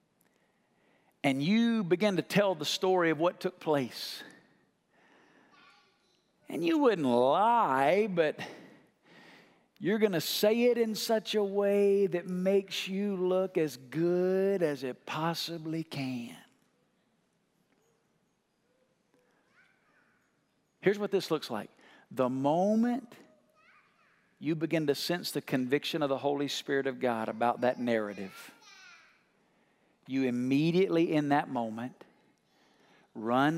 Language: English